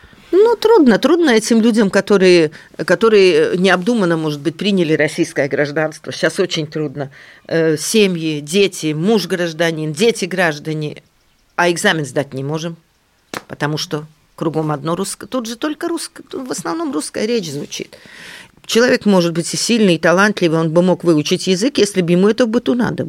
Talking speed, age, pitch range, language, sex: 160 wpm, 40-59, 165-235 Hz, Russian, female